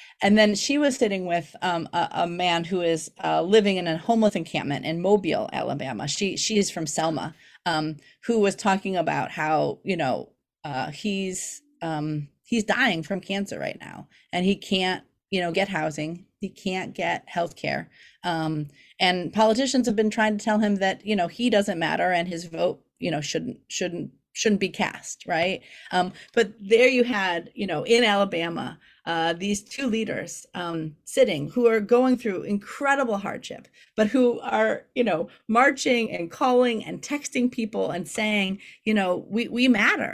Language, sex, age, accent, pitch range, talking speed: English, female, 30-49, American, 175-230 Hz, 180 wpm